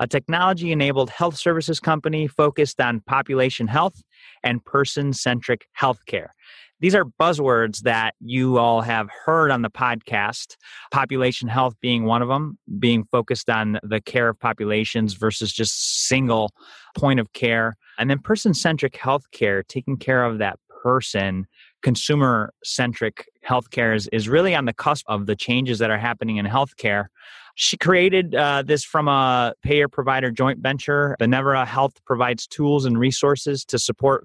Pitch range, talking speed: 115-140 Hz, 150 wpm